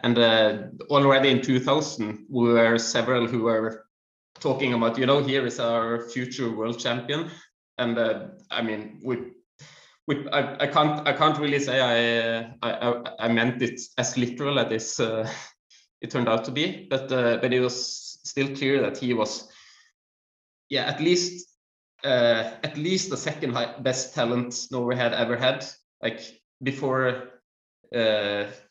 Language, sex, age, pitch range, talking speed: English, male, 20-39, 115-135 Hz, 160 wpm